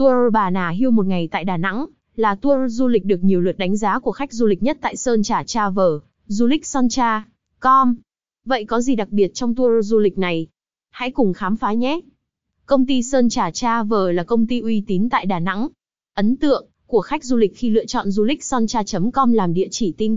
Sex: female